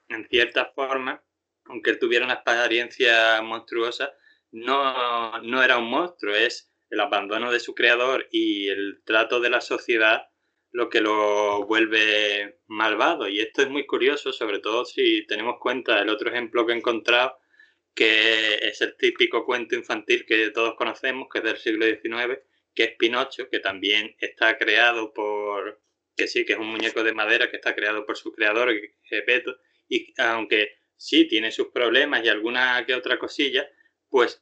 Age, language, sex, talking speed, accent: 20-39, Spanish, male, 165 wpm, Spanish